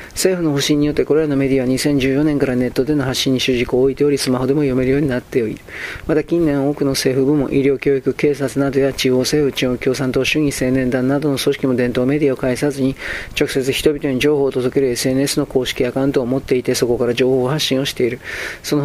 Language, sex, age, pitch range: Japanese, male, 40-59, 130-145 Hz